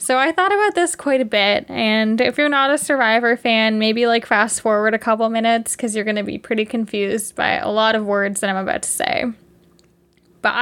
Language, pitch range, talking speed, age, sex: English, 220-275 Hz, 225 wpm, 10-29, female